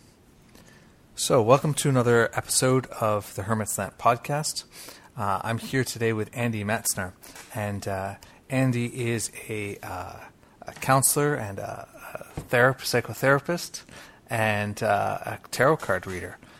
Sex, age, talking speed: male, 30-49, 125 wpm